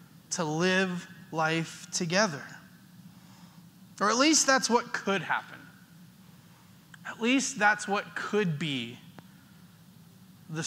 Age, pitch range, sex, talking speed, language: 20-39, 160-185 Hz, male, 100 wpm, English